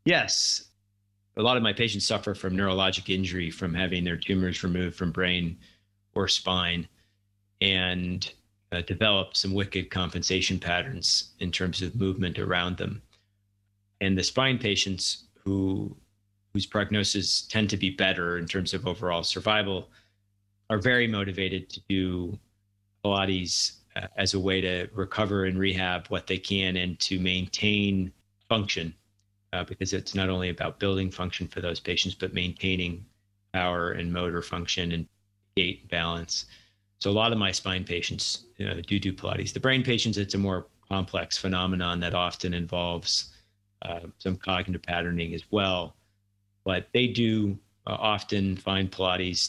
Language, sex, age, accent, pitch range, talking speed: English, male, 30-49, American, 90-100 Hz, 150 wpm